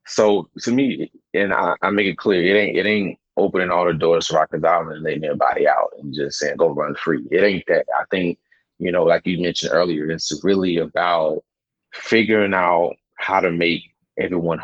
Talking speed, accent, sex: 205 wpm, American, male